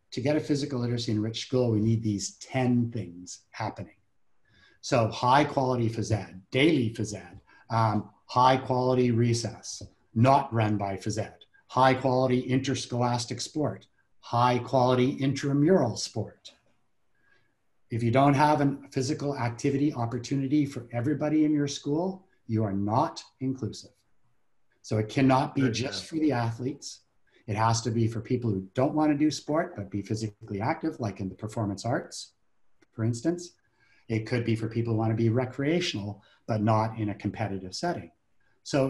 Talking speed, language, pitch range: 160 wpm, English, 110-135 Hz